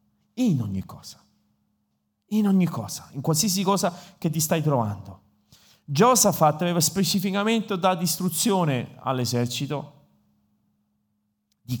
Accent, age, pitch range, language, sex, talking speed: native, 40-59, 105-125 Hz, Italian, male, 100 wpm